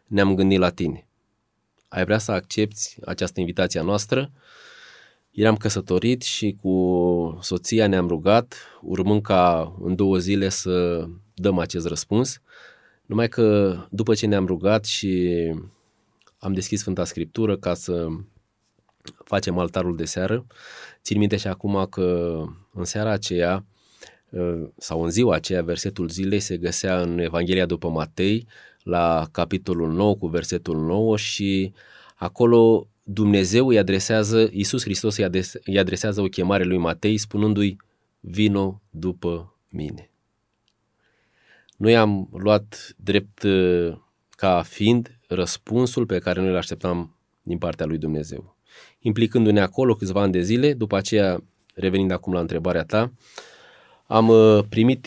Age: 20-39